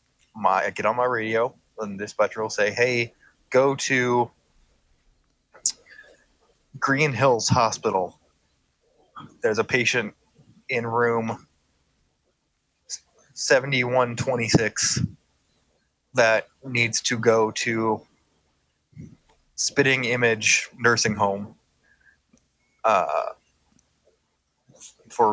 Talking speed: 80 wpm